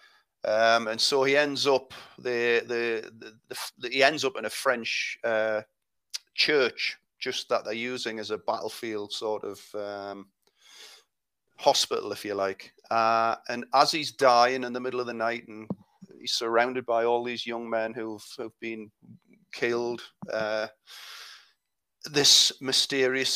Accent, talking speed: British, 150 wpm